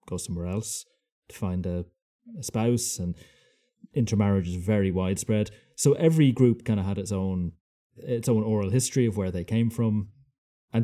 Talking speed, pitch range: 170 wpm, 95-115 Hz